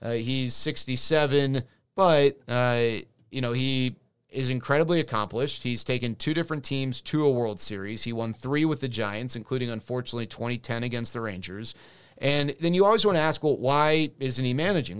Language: English